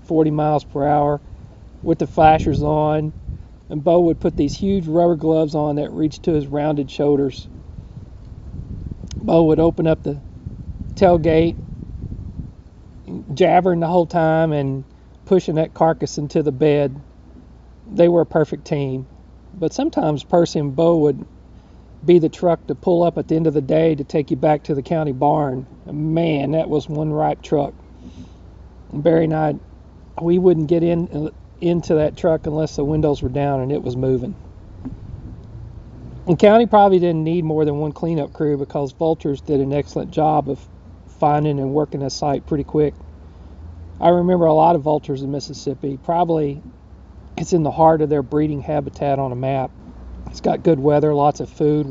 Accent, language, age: American, English, 40-59